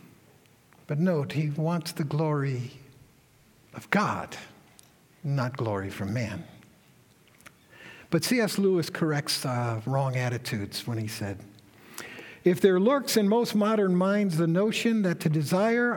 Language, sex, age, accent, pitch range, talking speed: English, male, 60-79, American, 135-200 Hz, 130 wpm